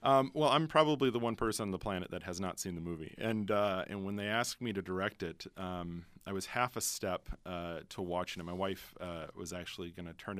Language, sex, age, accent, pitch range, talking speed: English, male, 40-59, American, 85-110 Hz, 255 wpm